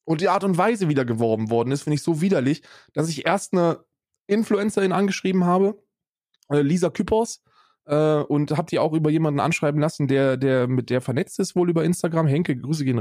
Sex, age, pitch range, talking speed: male, 20-39, 125-165 Hz, 200 wpm